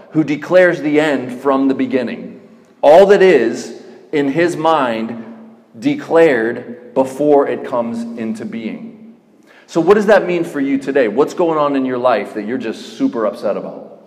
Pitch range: 115-155 Hz